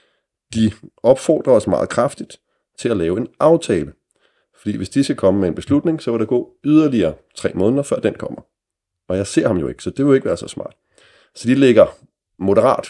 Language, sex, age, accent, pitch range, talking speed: Danish, male, 30-49, native, 90-110 Hz, 215 wpm